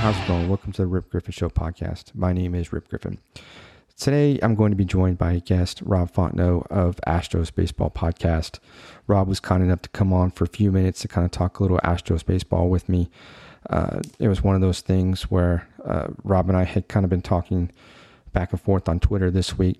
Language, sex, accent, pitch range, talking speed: English, male, American, 85-95 Hz, 225 wpm